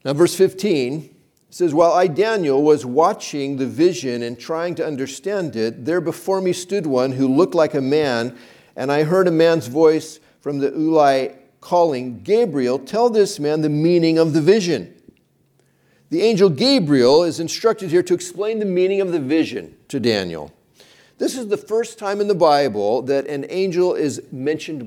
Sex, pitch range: male, 125-180 Hz